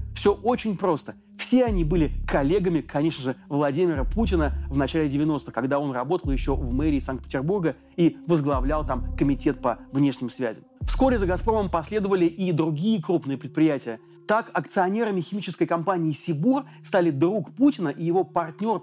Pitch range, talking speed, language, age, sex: 150-190 Hz, 150 wpm, Russian, 30-49, male